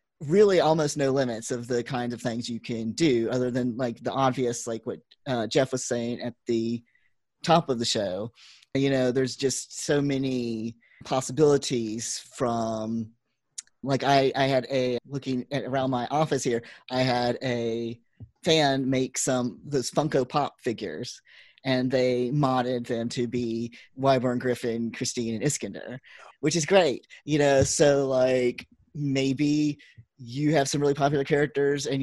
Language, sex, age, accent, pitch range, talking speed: English, male, 30-49, American, 120-140 Hz, 155 wpm